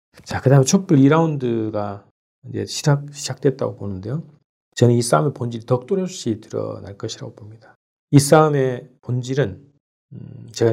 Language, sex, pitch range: Korean, male, 110-145 Hz